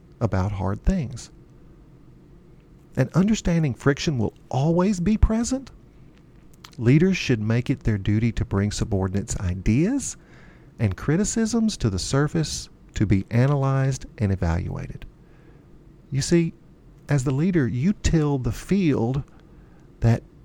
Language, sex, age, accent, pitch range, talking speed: English, male, 50-69, American, 105-155 Hz, 115 wpm